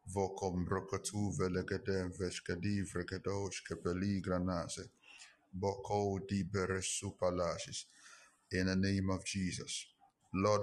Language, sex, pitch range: English, male, 95-105 Hz